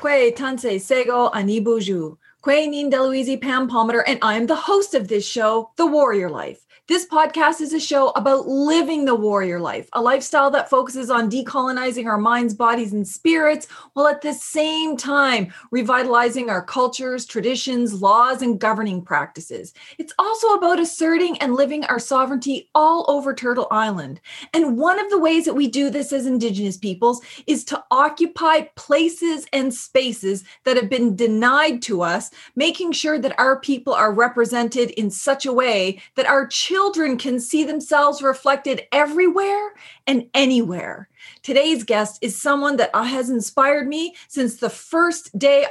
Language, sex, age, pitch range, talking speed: English, female, 30-49, 235-310 Hz, 165 wpm